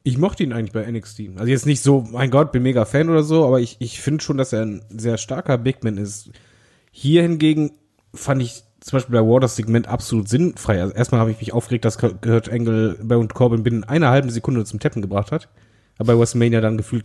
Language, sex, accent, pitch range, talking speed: German, male, German, 110-145 Hz, 235 wpm